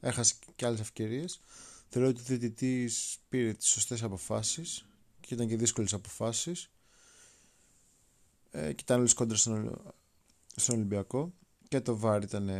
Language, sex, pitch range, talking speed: Greek, male, 105-130 Hz, 135 wpm